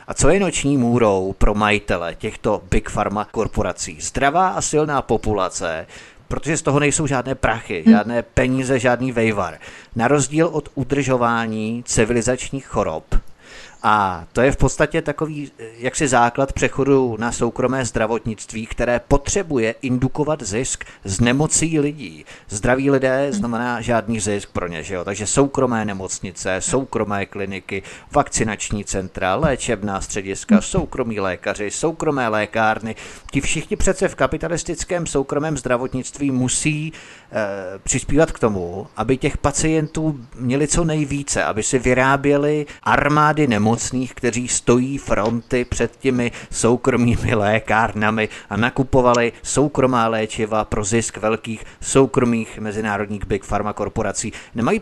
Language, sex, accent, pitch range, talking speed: Czech, male, native, 110-140 Hz, 125 wpm